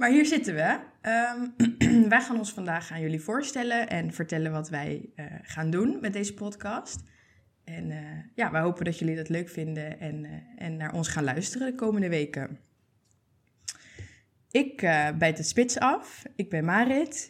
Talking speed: 175 wpm